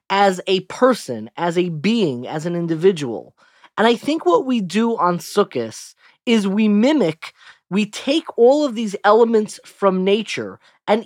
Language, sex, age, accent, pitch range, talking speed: English, male, 20-39, American, 165-225 Hz, 155 wpm